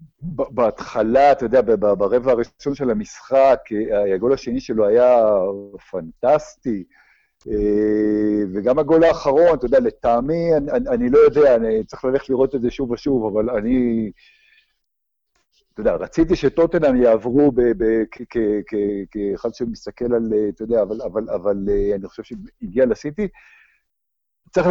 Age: 50-69